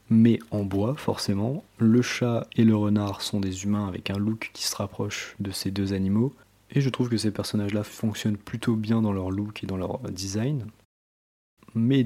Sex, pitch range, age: male, 100-115 Hz, 20-39